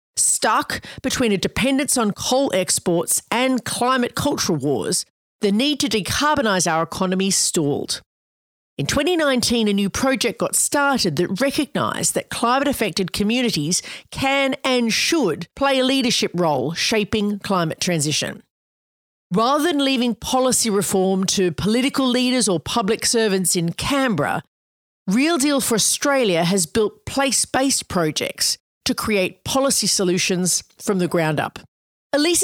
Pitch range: 185-265 Hz